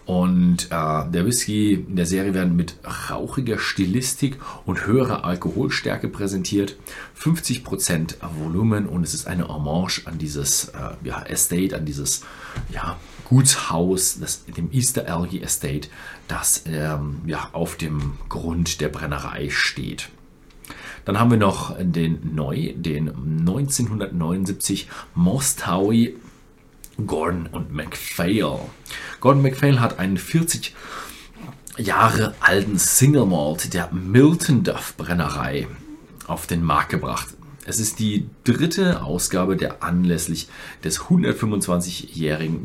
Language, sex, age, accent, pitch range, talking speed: German, male, 40-59, German, 85-115 Hz, 115 wpm